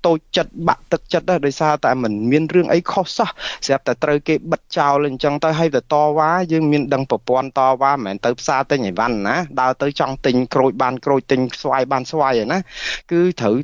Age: 20-39